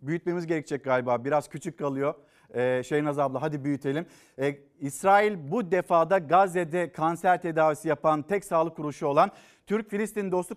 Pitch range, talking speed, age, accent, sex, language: 155-200 Hz, 160 wpm, 50-69, native, male, Turkish